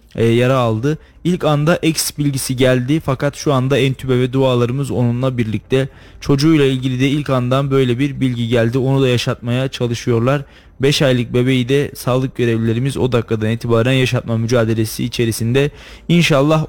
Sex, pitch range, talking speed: male, 120-140 Hz, 150 wpm